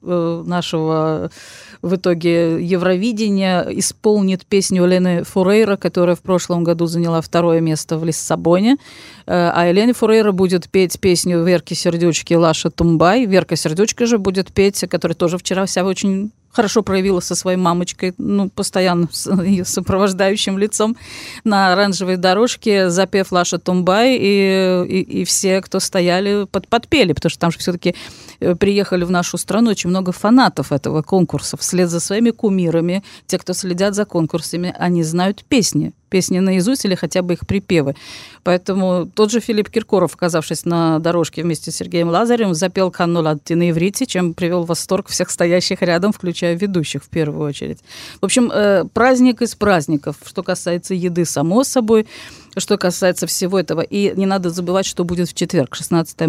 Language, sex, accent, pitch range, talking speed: Russian, female, native, 170-195 Hz, 155 wpm